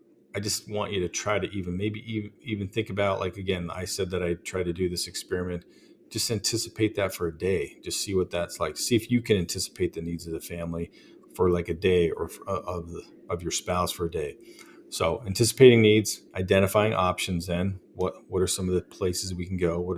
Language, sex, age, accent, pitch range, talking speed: English, male, 40-59, American, 85-105 Hz, 230 wpm